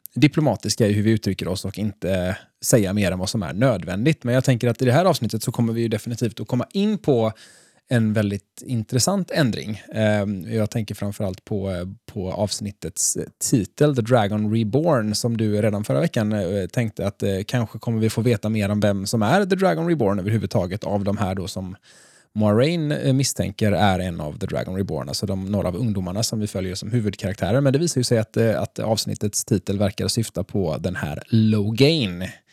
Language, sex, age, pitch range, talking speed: Swedish, male, 20-39, 100-125 Hz, 195 wpm